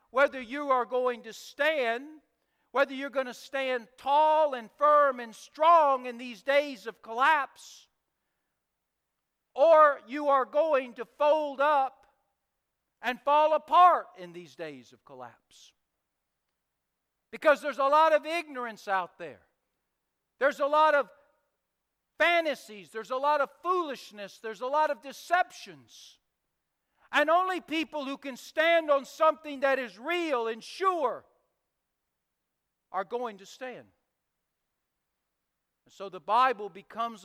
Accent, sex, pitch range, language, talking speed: American, male, 205-285 Hz, English, 130 wpm